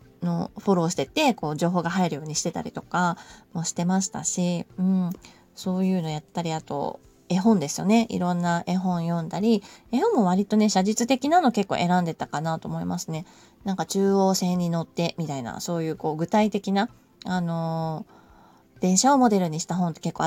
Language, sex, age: Japanese, female, 20-39